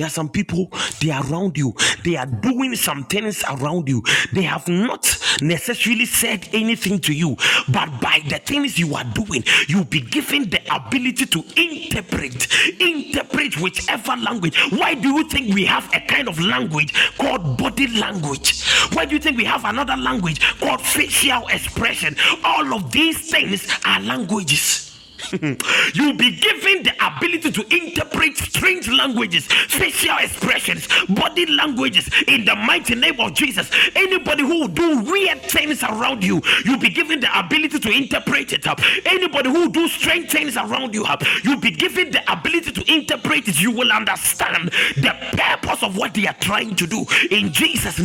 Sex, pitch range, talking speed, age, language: male, 190-305 Hz, 170 wpm, 50-69, English